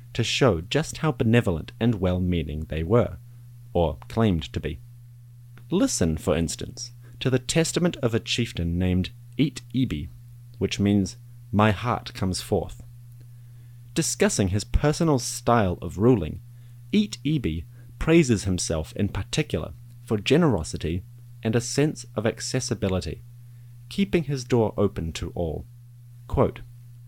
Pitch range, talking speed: 100-120 Hz, 125 wpm